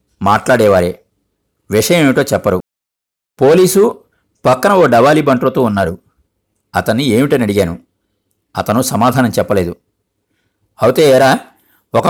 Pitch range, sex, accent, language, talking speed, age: 100-160 Hz, male, native, Telugu, 85 wpm, 50-69